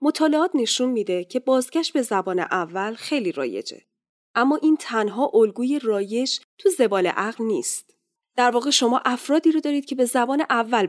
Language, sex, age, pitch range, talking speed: Persian, female, 10-29, 195-285 Hz, 155 wpm